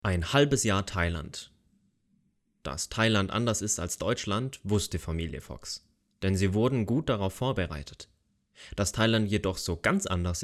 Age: 30-49